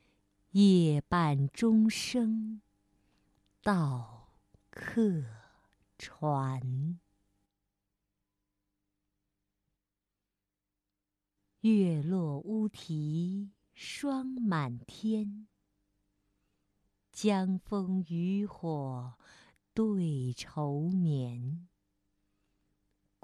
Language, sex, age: Chinese, female, 50-69